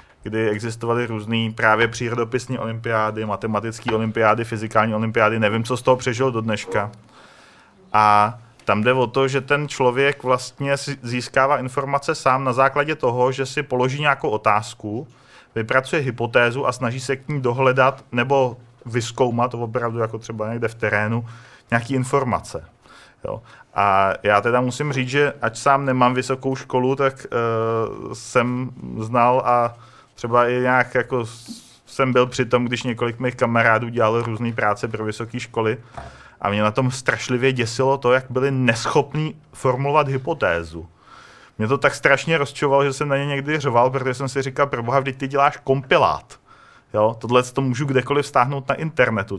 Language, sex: Czech, male